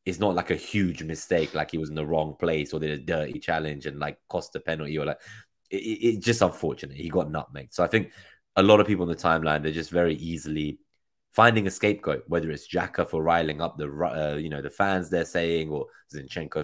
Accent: British